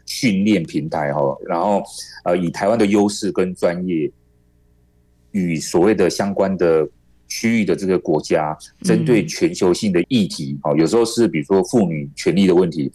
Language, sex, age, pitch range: Chinese, male, 30-49, 75-100 Hz